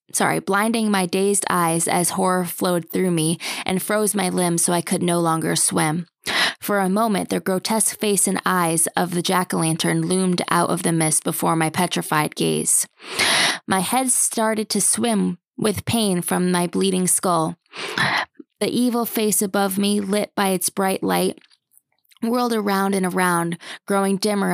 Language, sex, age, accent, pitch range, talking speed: English, female, 20-39, American, 175-200 Hz, 165 wpm